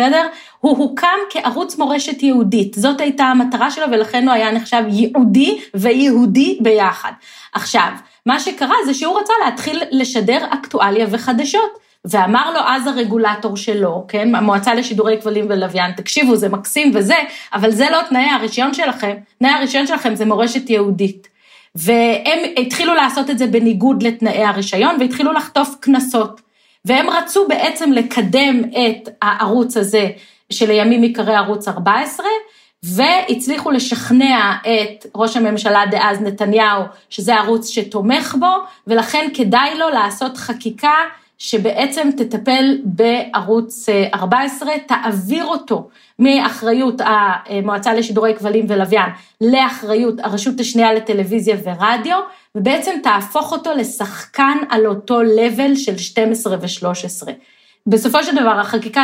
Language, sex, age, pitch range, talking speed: Hebrew, female, 30-49, 215-275 Hz, 125 wpm